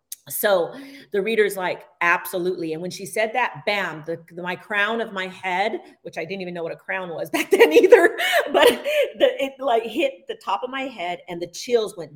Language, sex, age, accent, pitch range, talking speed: English, female, 40-59, American, 175-220 Hz, 215 wpm